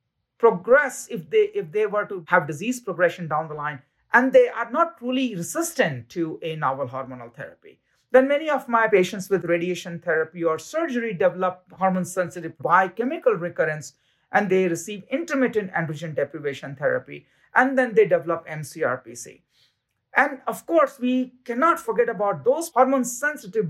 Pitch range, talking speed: 175-250 Hz, 155 wpm